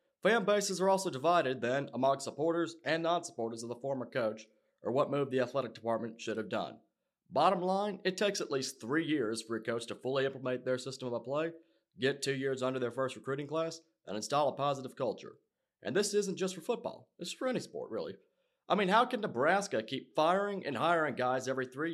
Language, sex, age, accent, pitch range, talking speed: English, male, 40-59, American, 125-180 Hz, 215 wpm